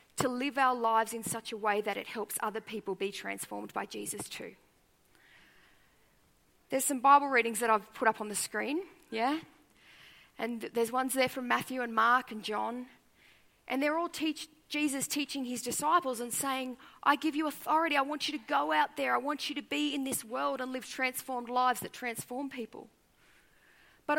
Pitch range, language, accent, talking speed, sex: 245-295 Hz, English, Australian, 190 wpm, female